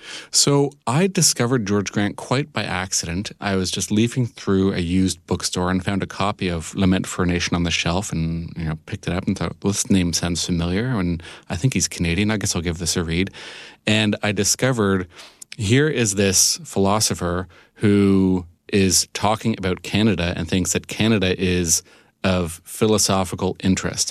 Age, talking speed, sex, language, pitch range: 30-49, 180 wpm, male, English, 90-105 Hz